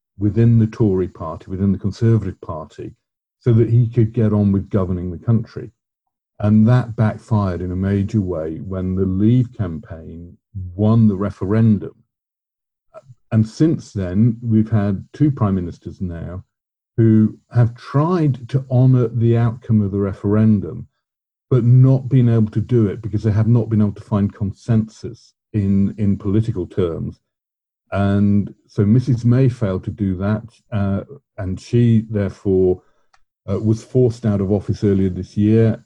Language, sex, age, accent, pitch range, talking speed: English, male, 50-69, British, 100-115 Hz, 155 wpm